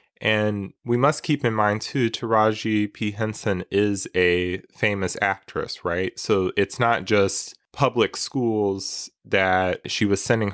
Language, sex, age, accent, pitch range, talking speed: English, male, 20-39, American, 95-110 Hz, 140 wpm